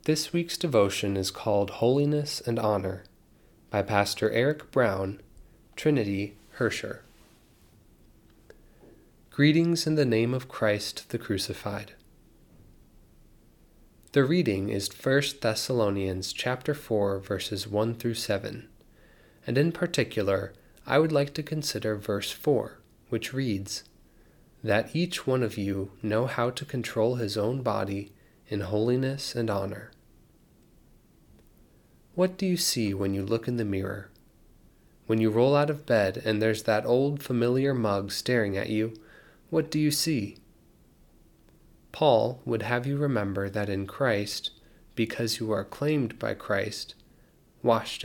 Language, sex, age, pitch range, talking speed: English, male, 20-39, 100-135 Hz, 130 wpm